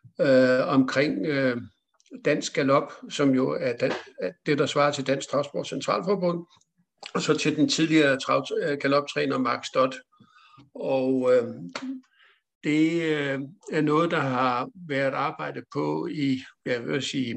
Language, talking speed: Danish, 140 wpm